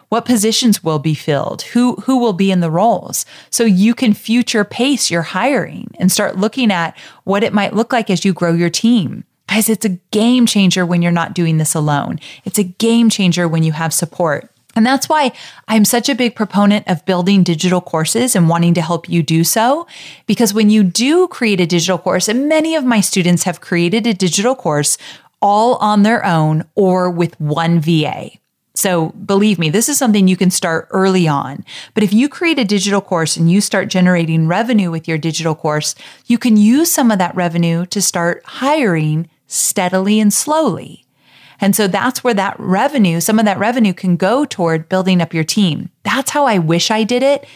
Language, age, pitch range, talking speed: English, 30-49, 170-225 Hz, 205 wpm